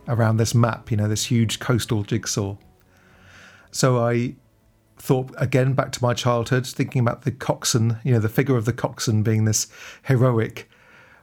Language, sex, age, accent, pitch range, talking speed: English, male, 40-59, British, 110-130 Hz, 165 wpm